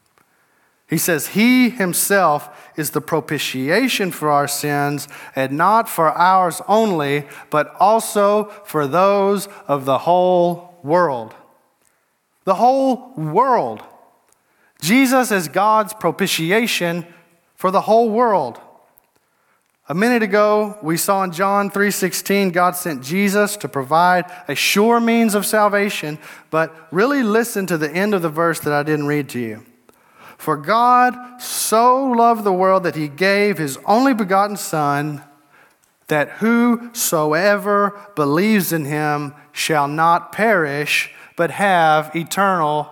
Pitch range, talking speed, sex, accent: 160-210 Hz, 125 wpm, male, American